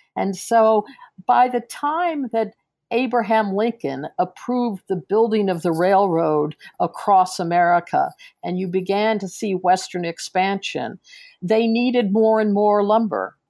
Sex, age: female, 50-69